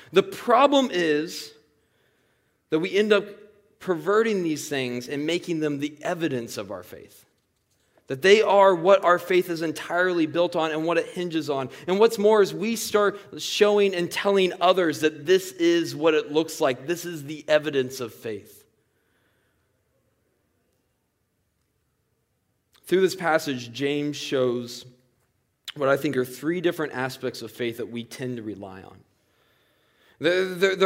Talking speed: 150 wpm